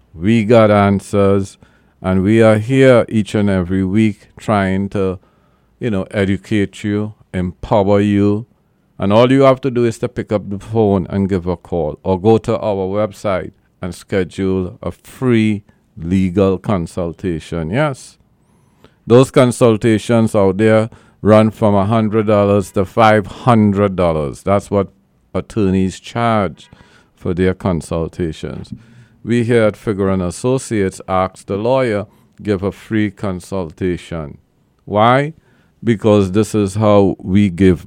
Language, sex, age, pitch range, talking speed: English, male, 50-69, 95-110 Hz, 130 wpm